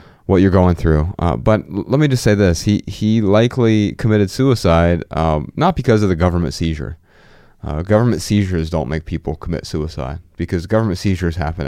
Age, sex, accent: 30-49, male, American